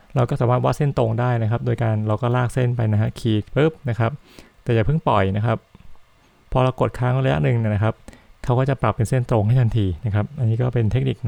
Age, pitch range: 20-39, 105-125 Hz